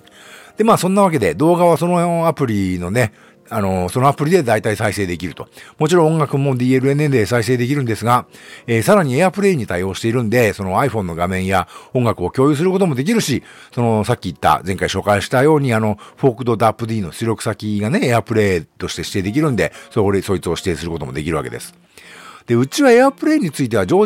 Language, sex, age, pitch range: Japanese, male, 50-69, 100-165 Hz